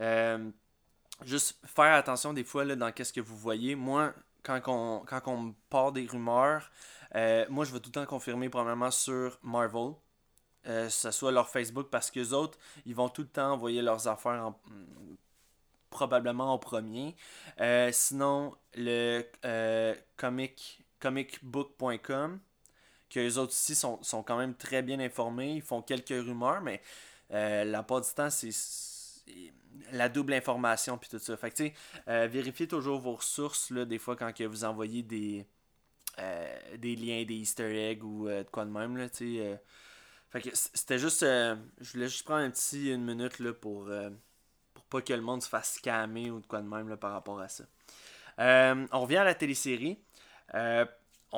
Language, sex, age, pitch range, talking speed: French, male, 20-39, 115-135 Hz, 190 wpm